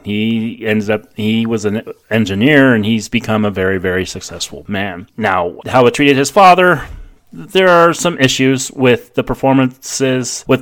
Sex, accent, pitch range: male, American, 105-145 Hz